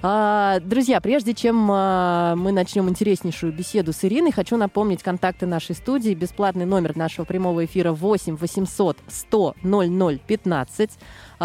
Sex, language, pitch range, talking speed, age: female, Russian, 175-220 Hz, 135 wpm, 20-39